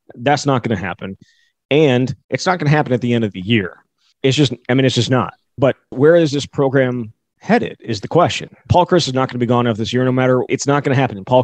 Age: 20-39